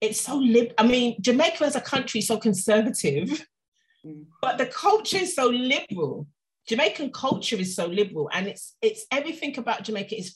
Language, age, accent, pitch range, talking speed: English, 30-49, British, 180-255 Hz, 170 wpm